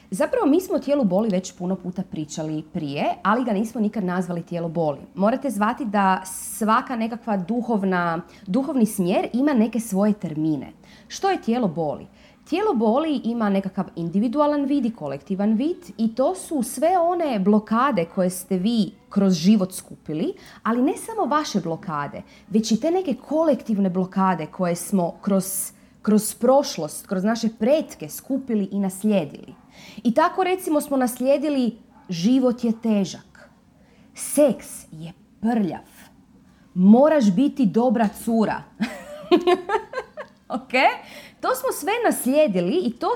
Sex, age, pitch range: female, 30-49, 195-270 Hz